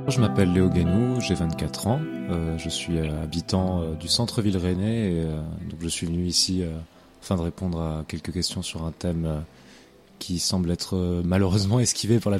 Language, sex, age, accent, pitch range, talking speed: French, male, 30-49, French, 85-105 Hz, 205 wpm